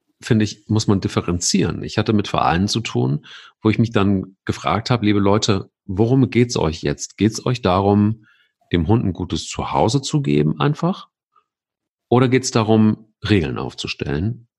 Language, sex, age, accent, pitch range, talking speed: German, male, 40-59, German, 95-120 Hz, 175 wpm